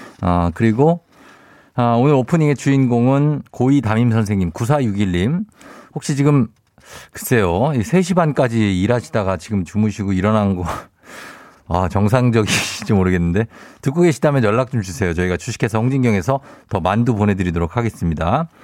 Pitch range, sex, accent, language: 95-155 Hz, male, native, Korean